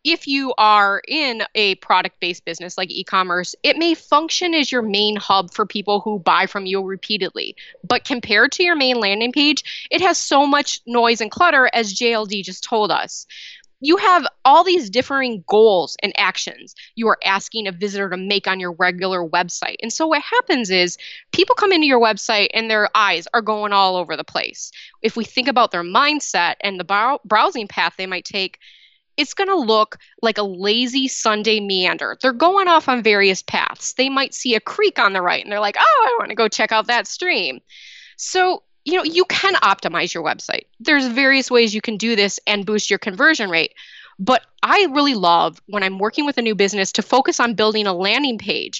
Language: English